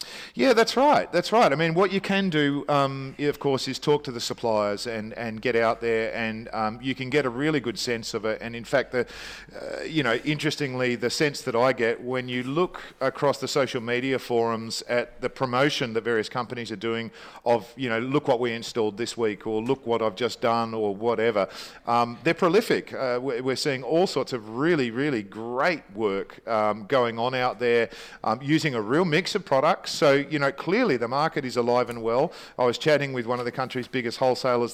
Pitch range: 120-145 Hz